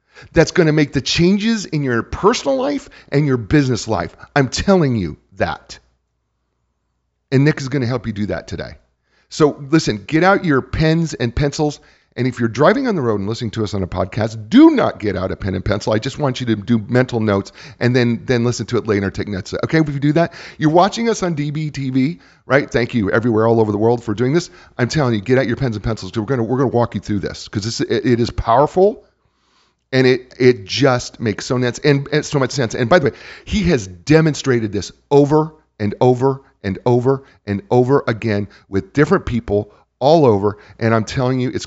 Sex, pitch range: male, 100-140 Hz